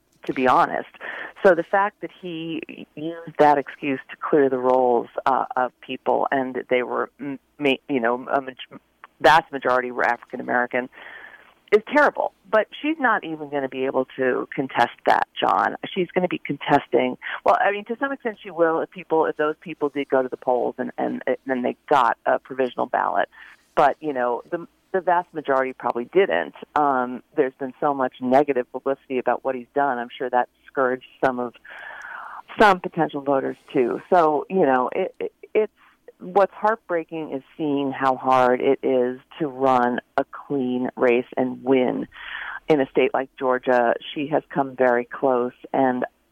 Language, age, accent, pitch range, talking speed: English, 40-59, American, 130-165 Hz, 175 wpm